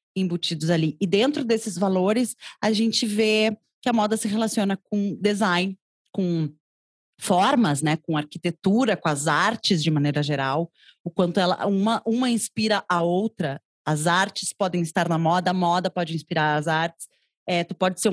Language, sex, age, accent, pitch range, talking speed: Portuguese, female, 20-39, Brazilian, 170-220 Hz, 170 wpm